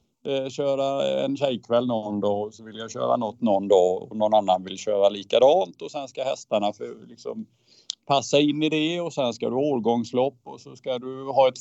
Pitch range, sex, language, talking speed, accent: 105-130 Hz, male, Swedish, 195 wpm, Norwegian